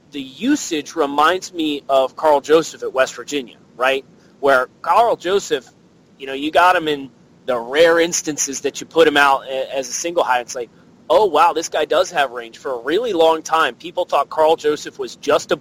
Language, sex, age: English, male, 30-49